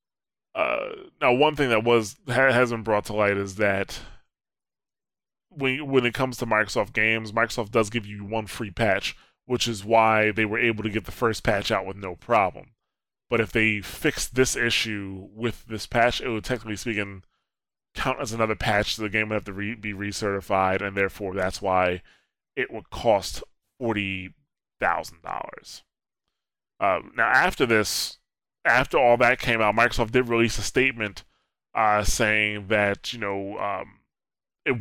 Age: 20-39